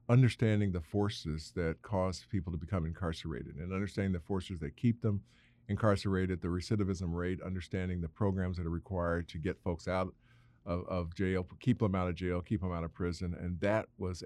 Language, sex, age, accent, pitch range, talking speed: English, male, 50-69, American, 85-100 Hz, 195 wpm